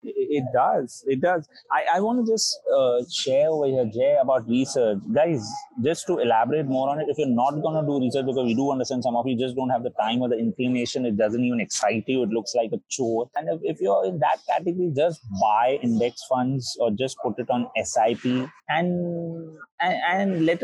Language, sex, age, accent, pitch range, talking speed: English, male, 30-49, Indian, 125-170 Hz, 220 wpm